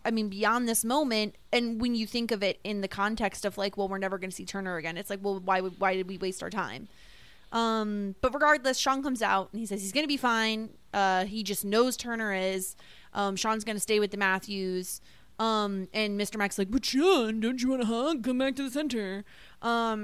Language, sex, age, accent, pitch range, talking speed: English, female, 20-39, American, 195-255 Hz, 245 wpm